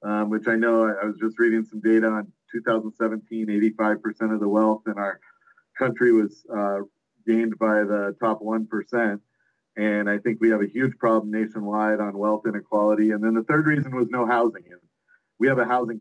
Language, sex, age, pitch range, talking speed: English, male, 40-59, 105-120 Hz, 185 wpm